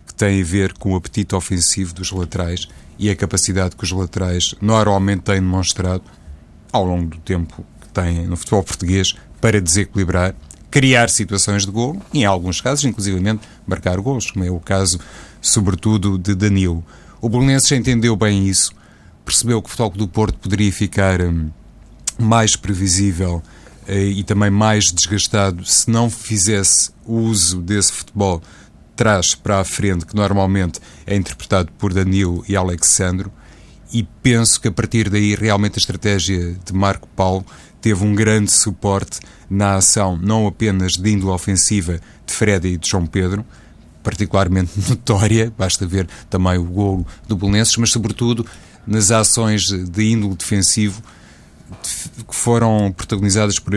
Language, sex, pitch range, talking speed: Portuguese, male, 90-105 Hz, 150 wpm